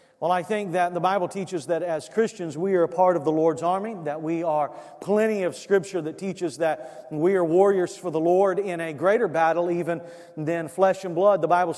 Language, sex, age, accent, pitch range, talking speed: English, male, 40-59, American, 165-190 Hz, 225 wpm